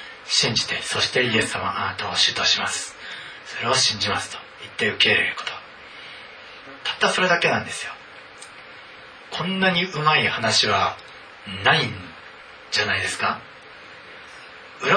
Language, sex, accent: Japanese, male, native